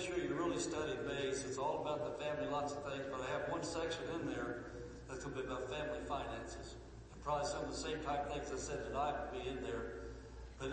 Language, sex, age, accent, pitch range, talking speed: English, male, 60-79, American, 130-165 Hz, 250 wpm